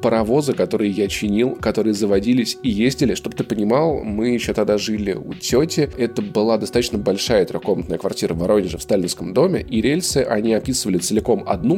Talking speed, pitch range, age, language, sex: 175 wpm, 105-130 Hz, 20-39, Russian, male